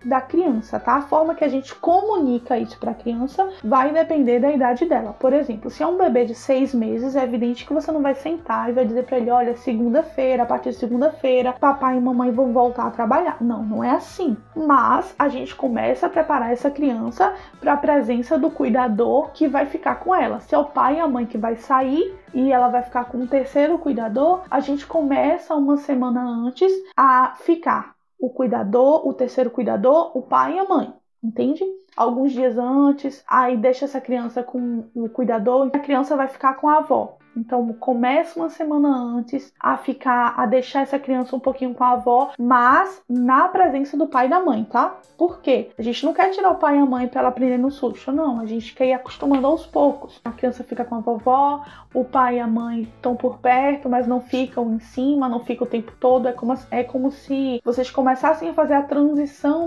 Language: Portuguese